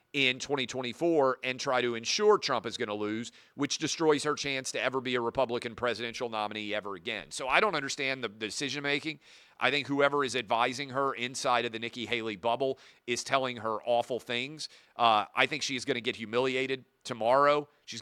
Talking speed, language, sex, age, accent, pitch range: 195 wpm, English, male, 40-59, American, 120-145 Hz